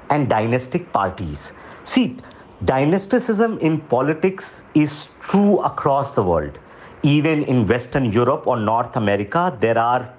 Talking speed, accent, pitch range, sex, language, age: 125 wpm, Indian, 115-155 Hz, male, English, 50-69